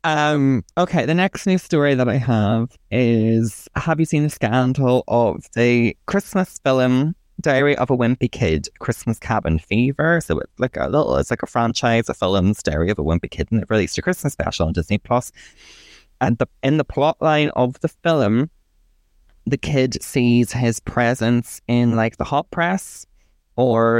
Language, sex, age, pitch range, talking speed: English, male, 20-39, 105-125 Hz, 180 wpm